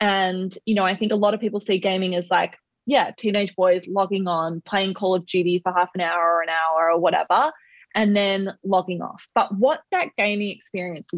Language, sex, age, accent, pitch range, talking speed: English, female, 20-39, Australian, 175-210 Hz, 215 wpm